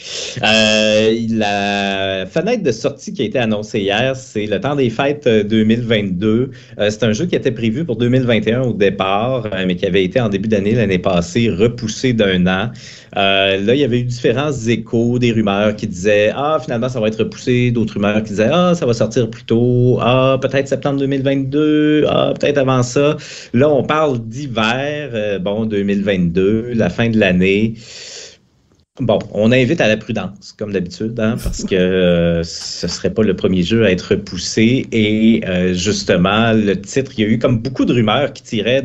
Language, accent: French, Canadian